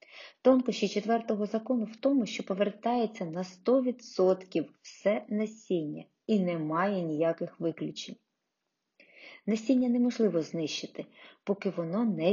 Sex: female